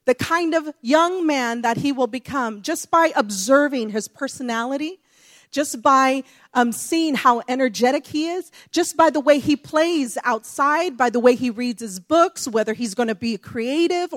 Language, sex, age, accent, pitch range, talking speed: English, female, 40-59, American, 255-330 Hz, 180 wpm